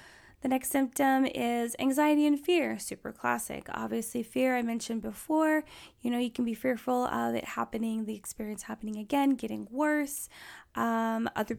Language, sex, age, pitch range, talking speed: English, female, 20-39, 220-255 Hz, 160 wpm